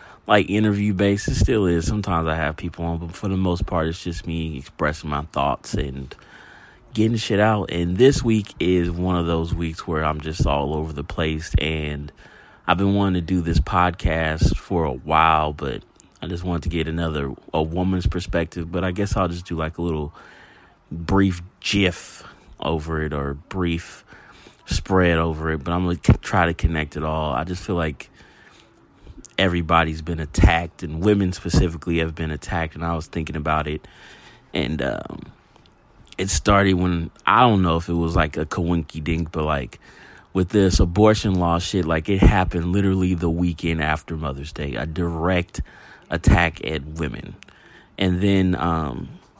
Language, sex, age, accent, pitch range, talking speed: English, male, 30-49, American, 80-95 Hz, 175 wpm